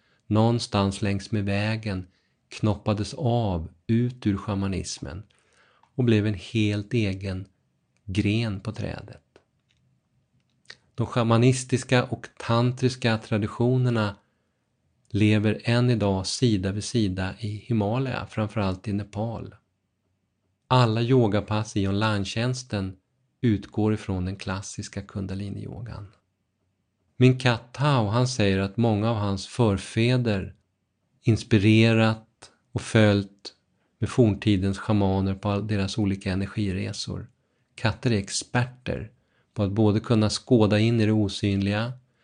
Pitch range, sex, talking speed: 100-115 Hz, male, 105 wpm